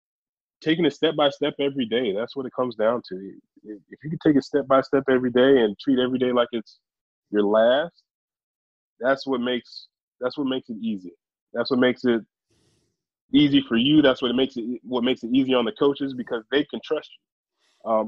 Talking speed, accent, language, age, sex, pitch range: 210 wpm, American, English, 20-39, male, 115-140 Hz